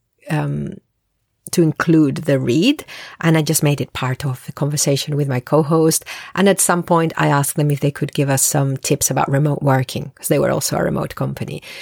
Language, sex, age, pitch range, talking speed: English, female, 40-59, 145-185 Hz, 210 wpm